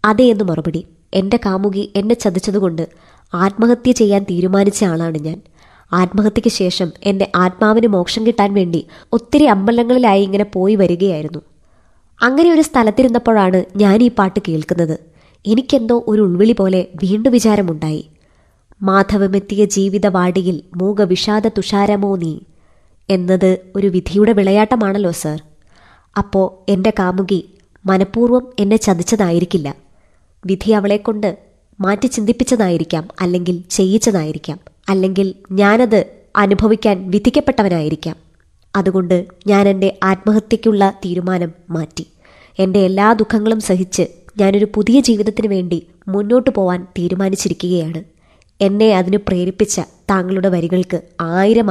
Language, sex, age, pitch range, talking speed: Malayalam, male, 20-39, 180-210 Hz, 95 wpm